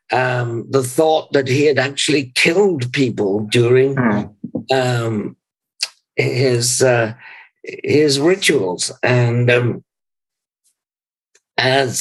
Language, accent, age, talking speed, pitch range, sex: English, British, 60-79, 90 wpm, 110-135 Hz, male